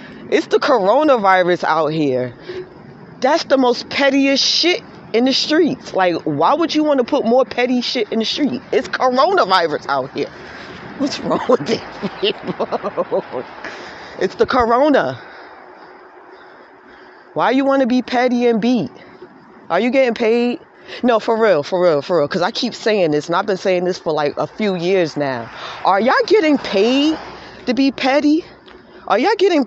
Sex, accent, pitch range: female, American, 195-285 Hz